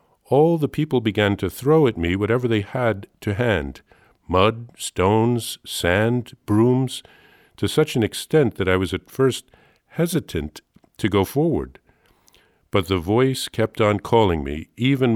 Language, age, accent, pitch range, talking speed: English, 50-69, American, 90-125 Hz, 145 wpm